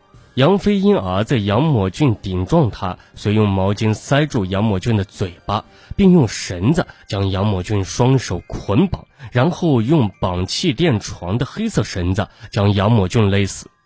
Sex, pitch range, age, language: male, 100-140 Hz, 20-39, Chinese